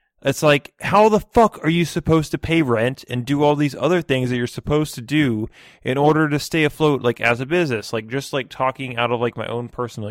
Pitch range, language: 105-135 Hz, English